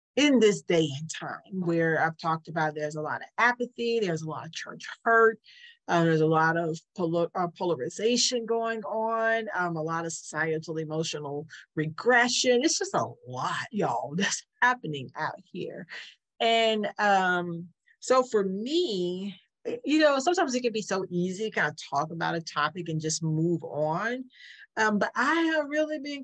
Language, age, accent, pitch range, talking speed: English, 40-59, American, 165-225 Hz, 170 wpm